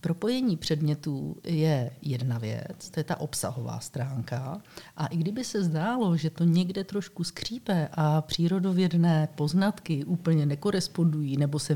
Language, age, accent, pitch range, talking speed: Czech, 50-69, native, 145-175 Hz, 140 wpm